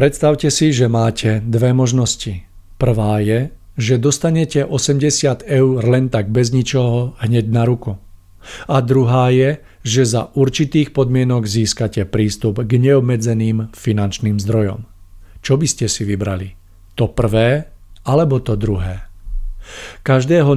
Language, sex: Czech, male